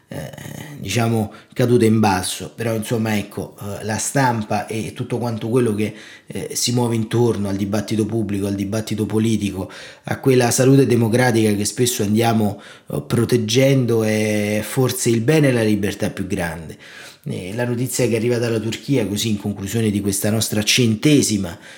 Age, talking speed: 30-49, 145 wpm